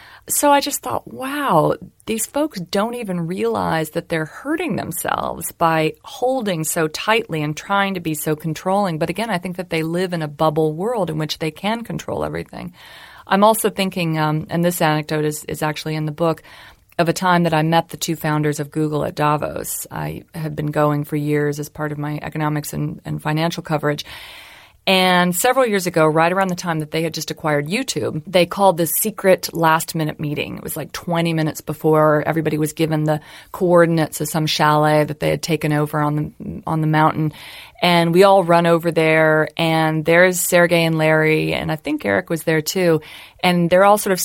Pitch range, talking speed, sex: 155-180 Hz, 200 wpm, female